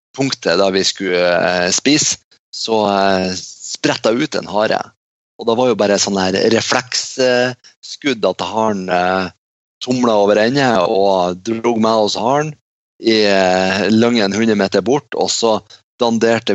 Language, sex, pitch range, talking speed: English, male, 95-115 Hz, 150 wpm